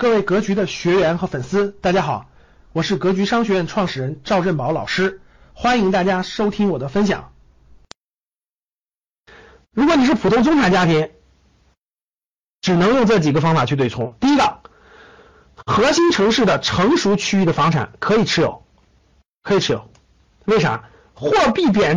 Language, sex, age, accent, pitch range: Chinese, male, 50-69, native, 180-265 Hz